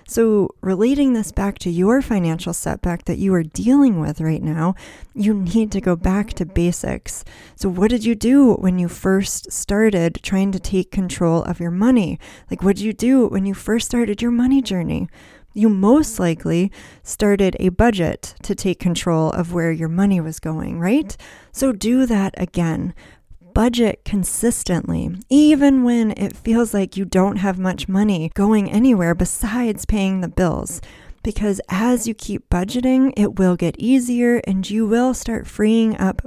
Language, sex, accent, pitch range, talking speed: English, female, American, 180-225 Hz, 170 wpm